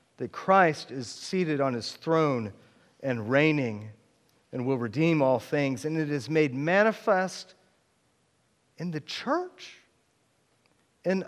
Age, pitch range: 40-59, 145-220 Hz